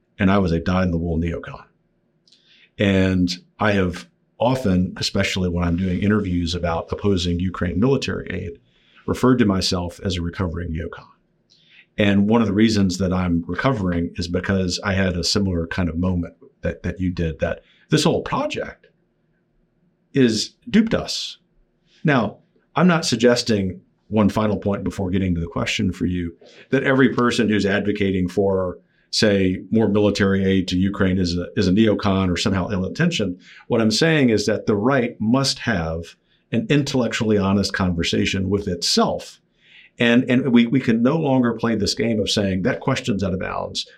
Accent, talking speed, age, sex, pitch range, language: American, 165 wpm, 50-69, male, 90-115 Hz, English